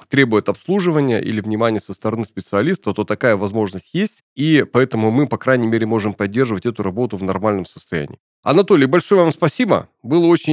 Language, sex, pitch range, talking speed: Russian, male, 110-145 Hz, 170 wpm